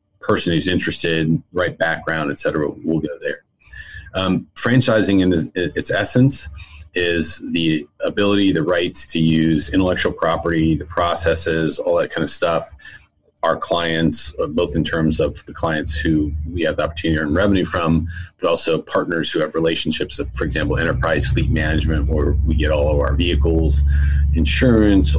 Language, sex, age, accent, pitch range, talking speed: English, male, 40-59, American, 80-95 Hz, 160 wpm